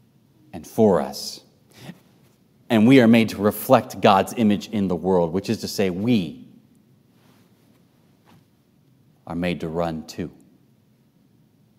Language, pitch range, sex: English, 95-120 Hz, male